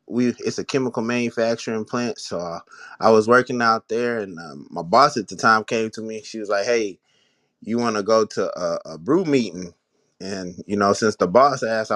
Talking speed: 210 wpm